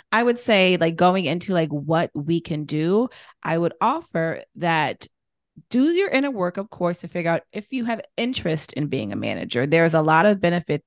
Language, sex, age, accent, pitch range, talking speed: English, female, 30-49, American, 160-195 Hz, 205 wpm